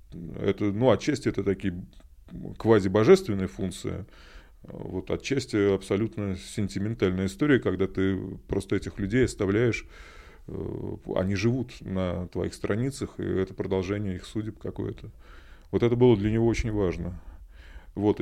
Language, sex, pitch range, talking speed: Russian, male, 90-110 Hz, 120 wpm